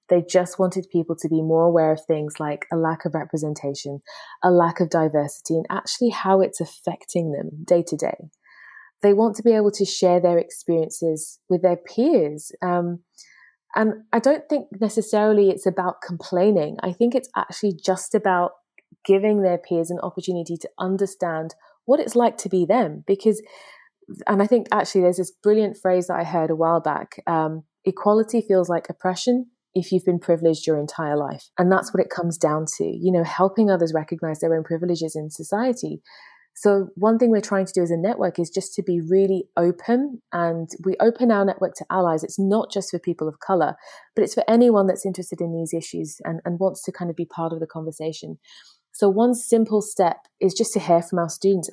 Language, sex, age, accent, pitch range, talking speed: English, female, 20-39, British, 165-205 Hz, 200 wpm